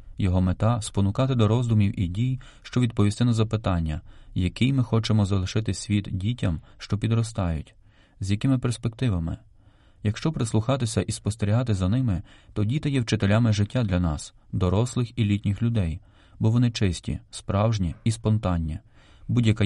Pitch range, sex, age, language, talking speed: 95-115 Hz, male, 30-49, Ukrainian, 145 wpm